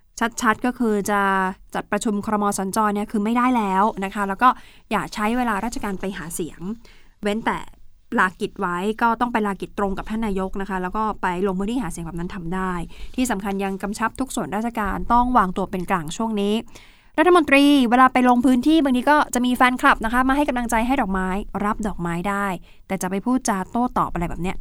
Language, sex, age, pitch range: Thai, female, 20-39, 195-245 Hz